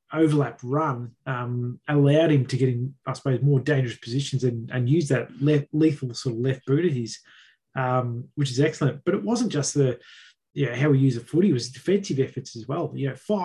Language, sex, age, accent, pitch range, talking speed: English, male, 20-39, Australian, 130-155 Hz, 220 wpm